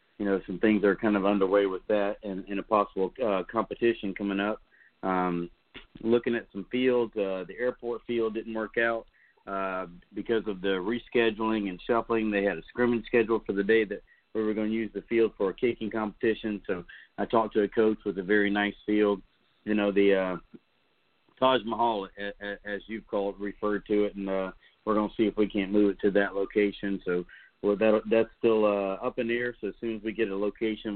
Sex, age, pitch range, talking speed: male, 40-59, 100-110 Hz, 215 wpm